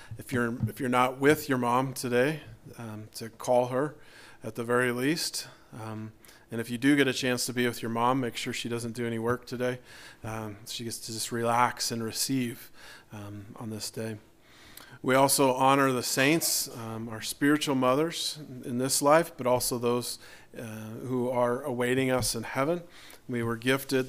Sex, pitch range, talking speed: male, 115-130 Hz, 185 wpm